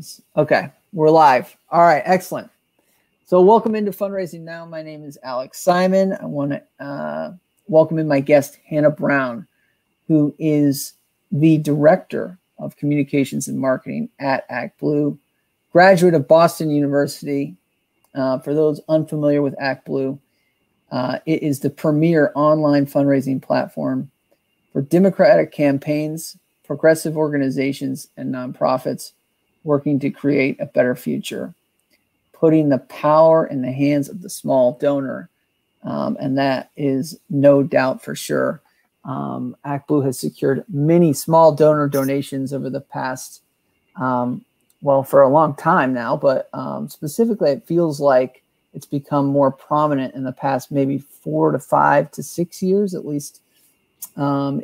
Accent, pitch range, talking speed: American, 140-165 Hz, 135 wpm